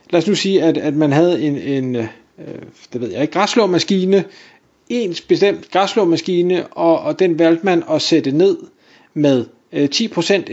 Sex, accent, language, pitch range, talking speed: male, native, Danish, 145-205 Hz, 125 wpm